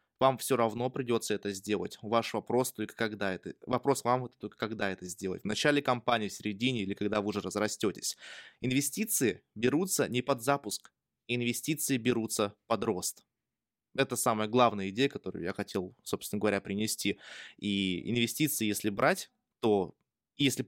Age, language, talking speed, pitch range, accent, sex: 20-39, Russian, 150 wpm, 105-130 Hz, native, male